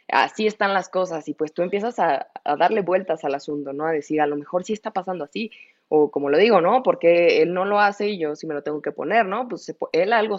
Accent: Mexican